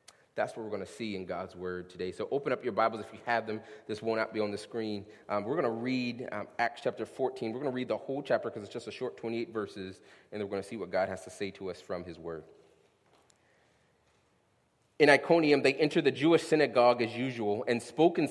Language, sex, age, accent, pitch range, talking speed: English, male, 30-49, American, 110-145 Hz, 250 wpm